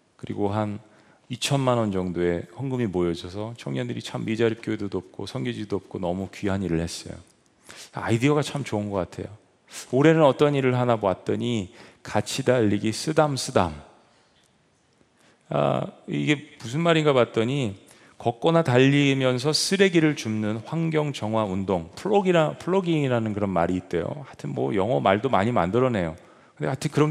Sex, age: male, 40-59